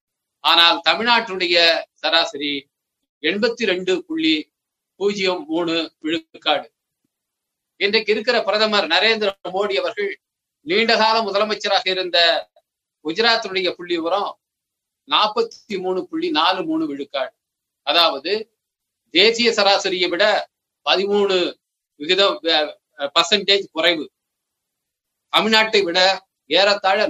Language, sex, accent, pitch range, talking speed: Tamil, male, native, 170-220 Hz, 80 wpm